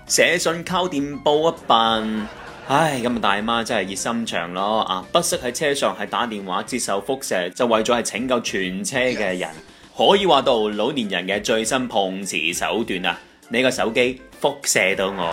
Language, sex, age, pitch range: Chinese, male, 30-49, 95-130 Hz